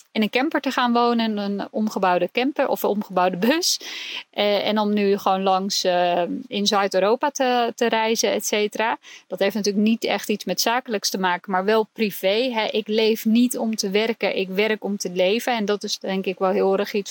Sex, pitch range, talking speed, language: female, 200-245 Hz, 210 wpm, Dutch